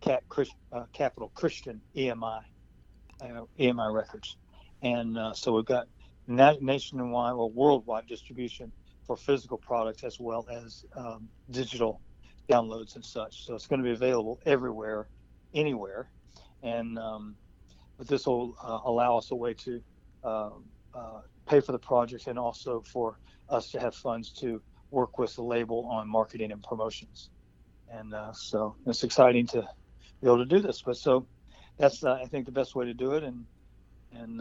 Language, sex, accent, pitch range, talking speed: English, male, American, 110-130 Hz, 160 wpm